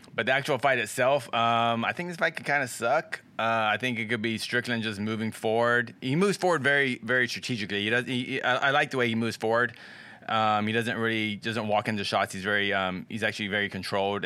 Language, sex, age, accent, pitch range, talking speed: English, male, 20-39, American, 100-120 Hz, 230 wpm